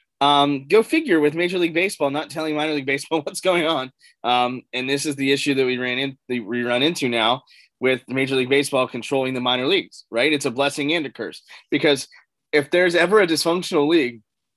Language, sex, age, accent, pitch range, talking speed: English, male, 20-39, American, 125-165 Hz, 210 wpm